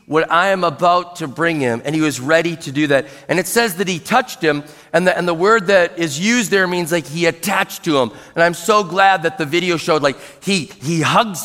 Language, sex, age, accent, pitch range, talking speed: English, male, 40-59, American, 150-195 Hz, 250 wpm